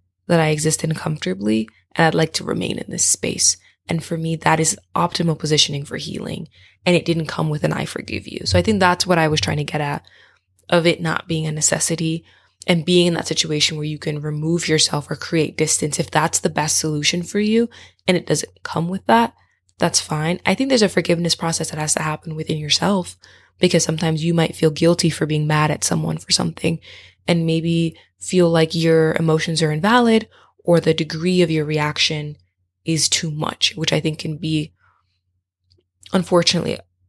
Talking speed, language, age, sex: 200 wpm, English, 20-39, female